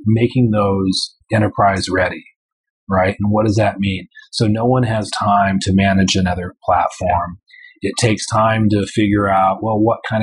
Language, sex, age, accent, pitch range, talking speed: English, male, 30-49, American, 95-115 Hz, 165 wpm